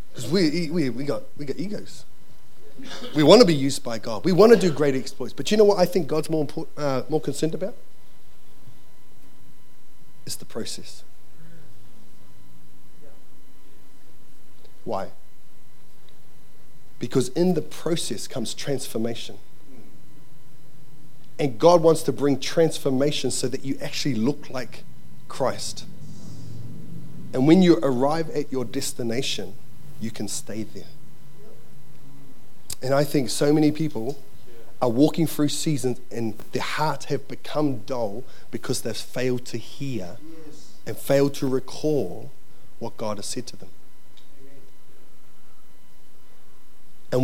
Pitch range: 125-150 Hz